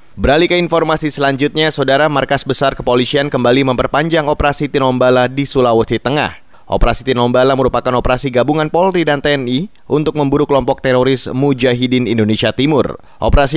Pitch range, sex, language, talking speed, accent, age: 100-140 Hz, male, Indonesian, 135 wpm, native, 20-39